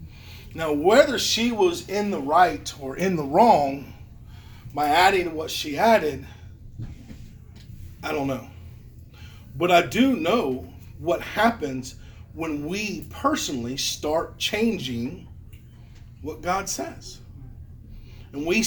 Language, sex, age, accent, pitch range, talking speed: English, male, 40-59, American, 115-185 Hz, 115 wpm